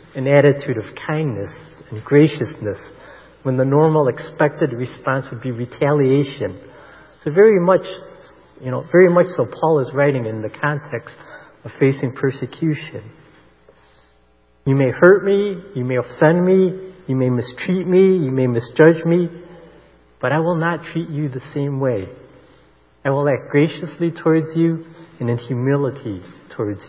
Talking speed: 145 wpm